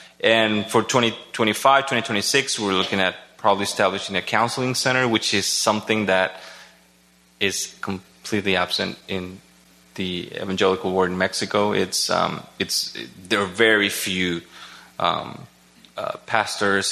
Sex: male